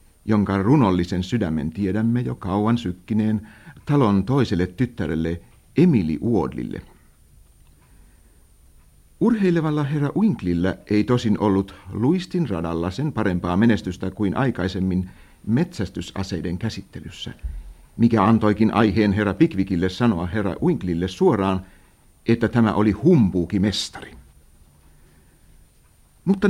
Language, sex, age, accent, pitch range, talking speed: Finnish, male, 60-79, native, 90-115 Hz, 95 wpm